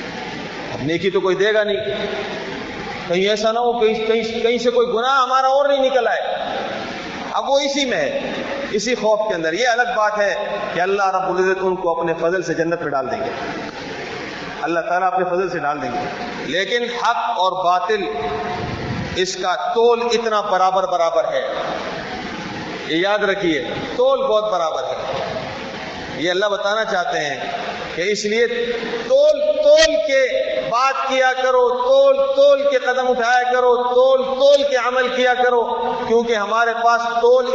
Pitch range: 200-255 Hz